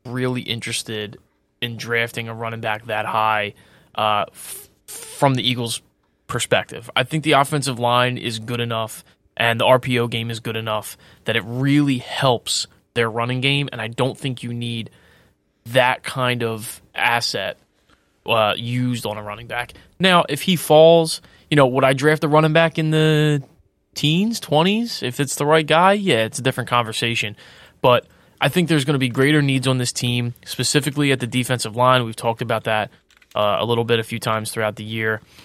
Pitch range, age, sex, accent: 115-145 Hz, 20-39, male, American